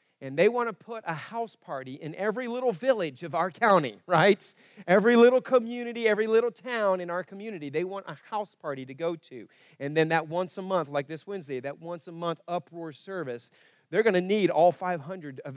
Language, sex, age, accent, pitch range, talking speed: English, male, 40-59, American, 170-220 Hz, 210 wpm